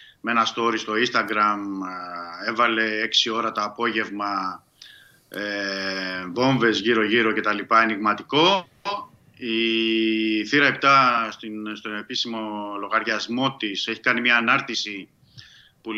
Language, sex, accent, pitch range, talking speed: Greek, male, native, 105-125 Hz, 115 wpm